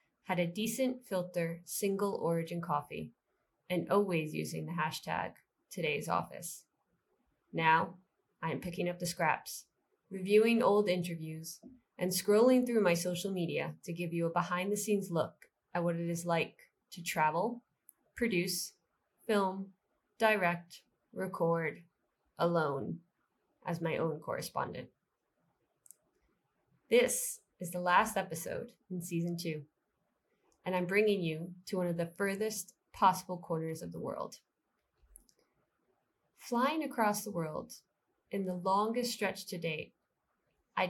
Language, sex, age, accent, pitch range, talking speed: English, female, 20-39, American, 170-205 Hz, 130 wpm